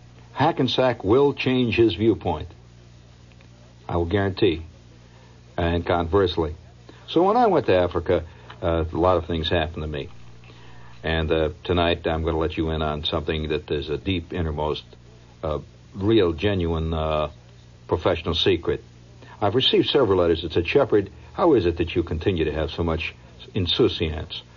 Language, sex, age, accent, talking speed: English, male, 60-79, American, 155 wpm